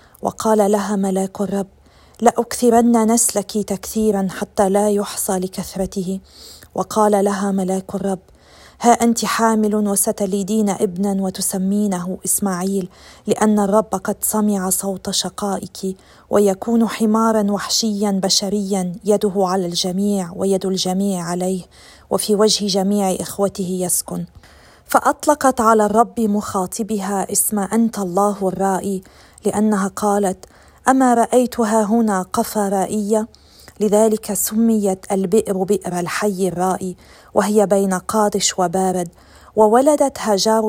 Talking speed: 105 wpm